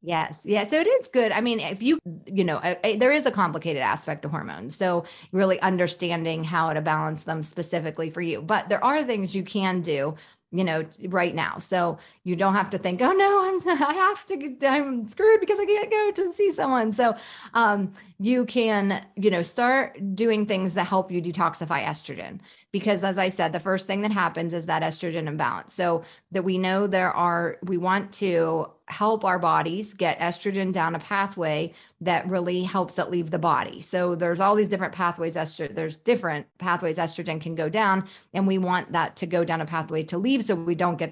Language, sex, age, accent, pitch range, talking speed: English, female, 30-49, American, 165-200 Hz, 205 wpm